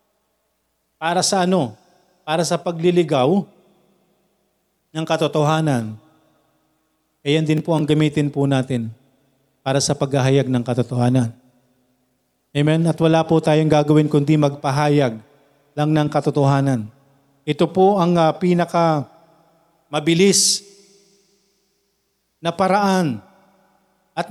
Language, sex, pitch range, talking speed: Filipino, male, 155-210 Hz, 100 wpm